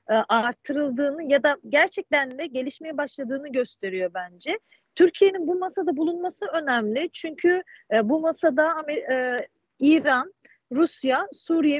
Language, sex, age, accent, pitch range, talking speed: Turkish, female, 40-59, native, 230-330 Hz, 100 wpm